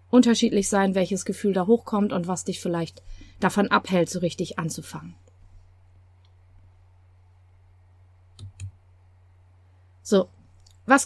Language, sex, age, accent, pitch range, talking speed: German, female, 30-49, German, 170-230 Hz, 90 wpm